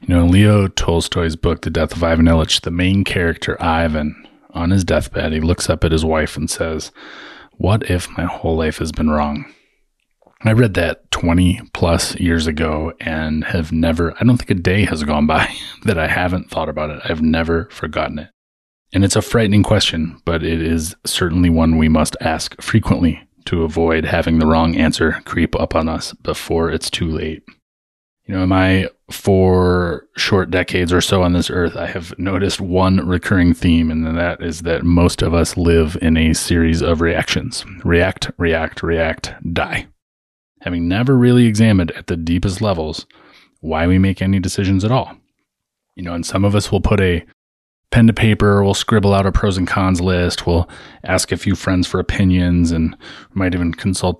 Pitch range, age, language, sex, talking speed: 80-95 Hz, 30-49, English, male, 190 wpm